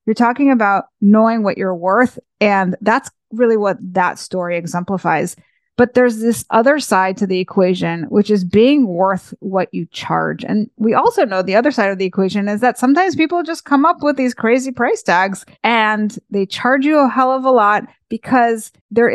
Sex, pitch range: female, 190-245 Hz